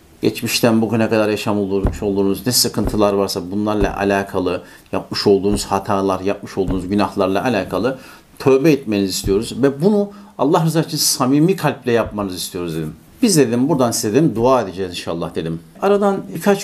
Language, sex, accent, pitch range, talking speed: Turkish, male, native, 105-135 Hz, 150 wpm